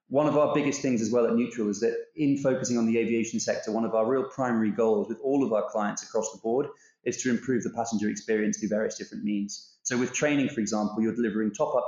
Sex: male